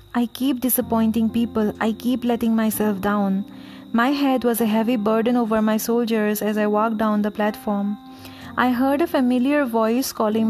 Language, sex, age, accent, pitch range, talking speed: English, female, 30-49, Indian, 205-240 Hz, 170 wpm